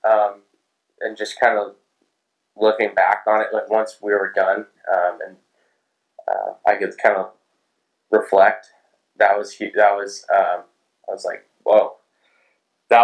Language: English